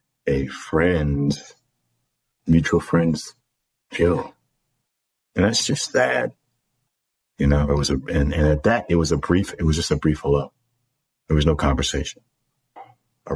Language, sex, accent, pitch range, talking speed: English, male, American, 80-120 Hz, 150 wpm